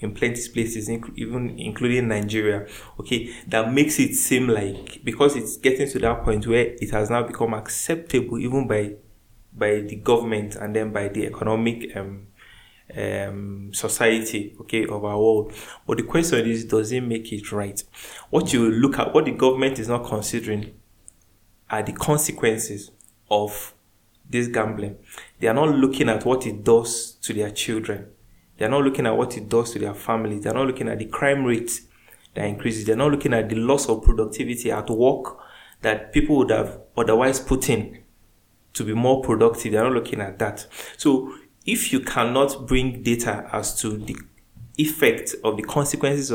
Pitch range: 105-120 Hz